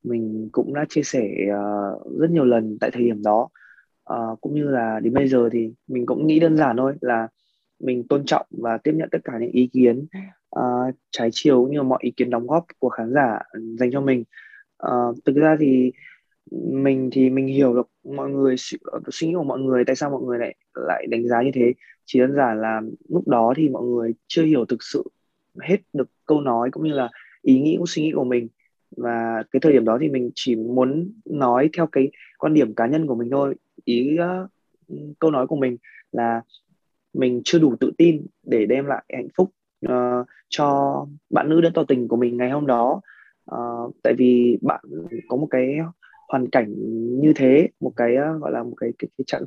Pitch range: 120-150 Hz